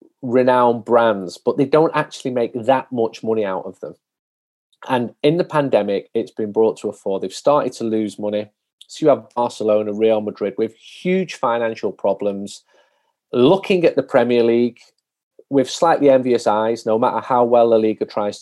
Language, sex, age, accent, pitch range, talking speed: English, male, 30-49, British, 110-130 Hz, 175 wpm